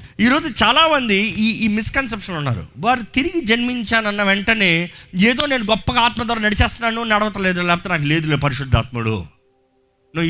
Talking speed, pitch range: 140 wpm, 130-215 Hz